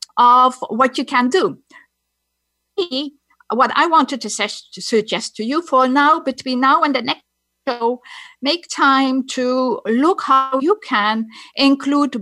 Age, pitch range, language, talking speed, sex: 50-69, 220-275 Hz, English, 140 wpm, female